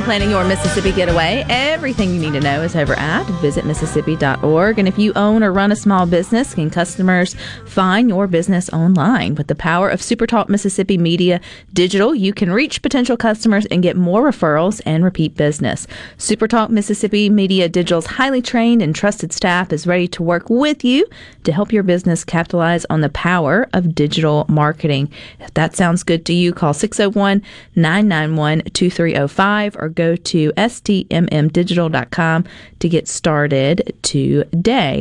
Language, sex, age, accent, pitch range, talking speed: English, female, 40-59, American, 160-210 Hz, 160 wpm